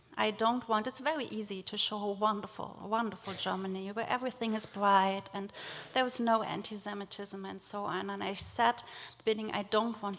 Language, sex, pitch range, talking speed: English, female, 200-230 Hz, 175 wpm